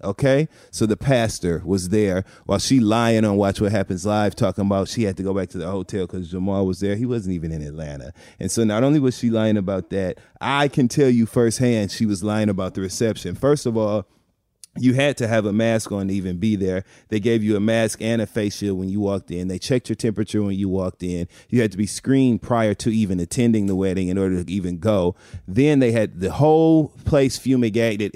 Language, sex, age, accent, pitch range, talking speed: English, male, 30-49, American, 95-115 Hz, 235 wpm